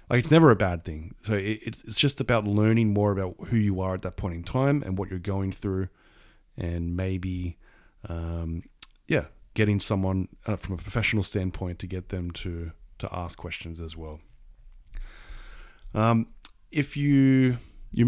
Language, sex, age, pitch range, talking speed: English, male, 20-39, 90-115 Hz, 170 wpm